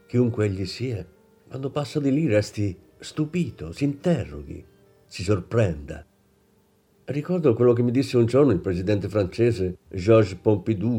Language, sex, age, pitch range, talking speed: Italian, male, 50-69, 95-130 Hz, 135 wpm